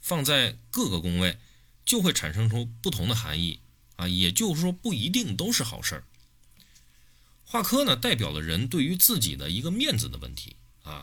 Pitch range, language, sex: 80-120 Hz, Chinese, male